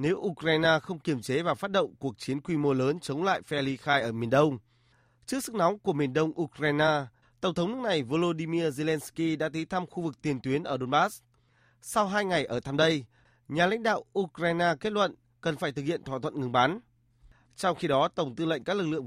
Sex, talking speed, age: male, 225 wpm, 20-39